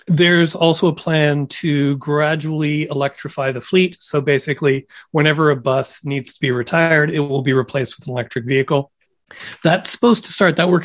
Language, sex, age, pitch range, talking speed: English, male, 40-59, 130-155 Hz, 175 wpm